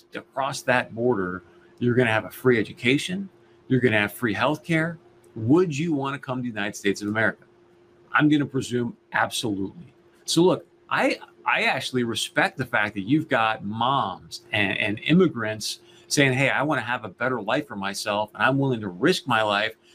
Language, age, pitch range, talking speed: English, 40-59, 110-140 Hz, 200 wpm